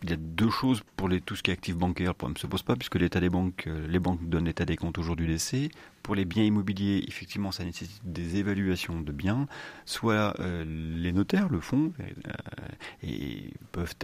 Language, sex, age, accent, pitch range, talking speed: French, male, 40-59, French, 85-100 Hz, 220 wpm